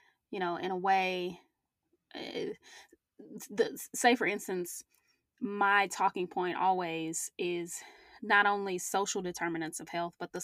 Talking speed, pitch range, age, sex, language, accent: 125 wpm, 185-250 Hz, 20-39, female, English, American